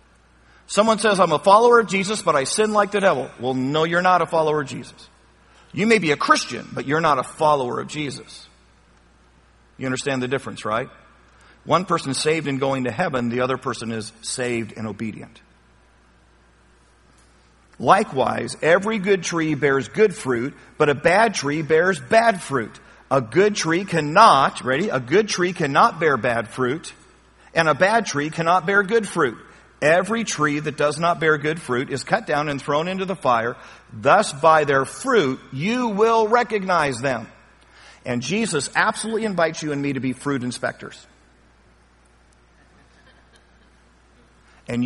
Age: 50-69